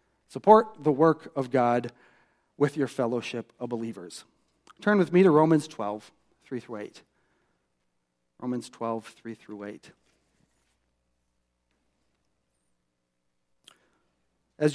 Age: 40-59